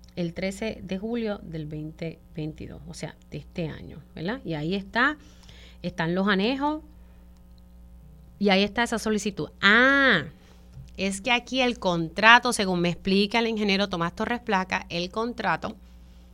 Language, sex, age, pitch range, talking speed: Spanish, female, 30-49, 155-225 Hz, 145 wpm